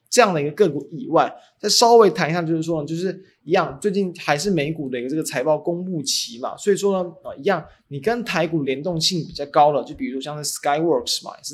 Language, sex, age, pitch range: Chinese, male, 20-39, 145-180 Hz